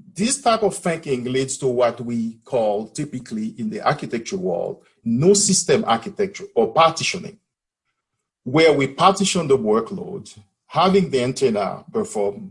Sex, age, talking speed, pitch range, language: male, 50-69, 135 wpm, 130-200 Hz, English